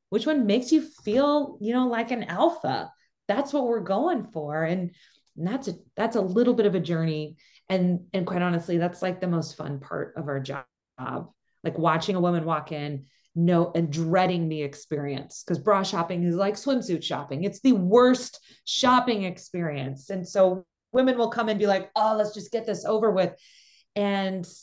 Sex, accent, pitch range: female, American, 160-210 Hz